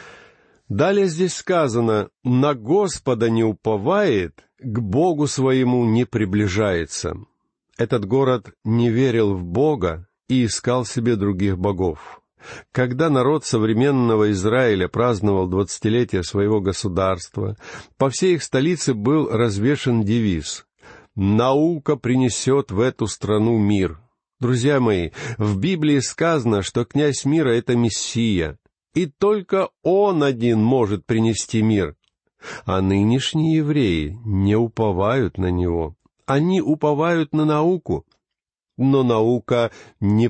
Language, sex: Russian, male